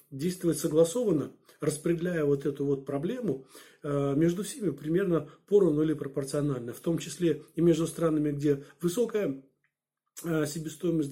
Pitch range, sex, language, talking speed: 145-175 Hz, male, Turkish, 120 wpm